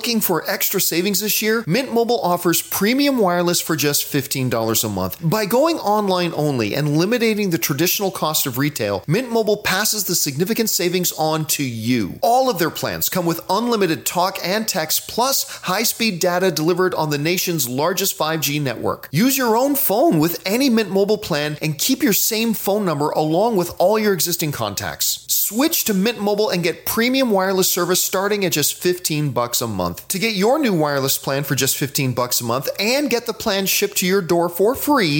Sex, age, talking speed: male, 40-59, 200 wpm